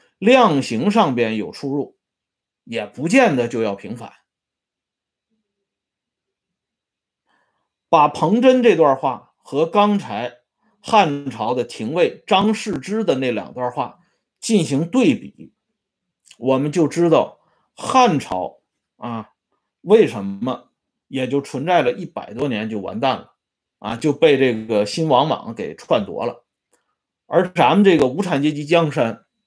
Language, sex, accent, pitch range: Swedish, male, Chinese, 125-210 Hz